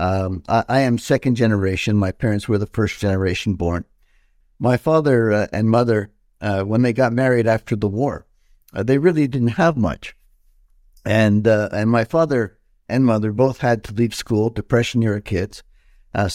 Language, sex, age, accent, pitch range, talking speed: English, male, 60-79, American, 105-125 Hz, 175 wpm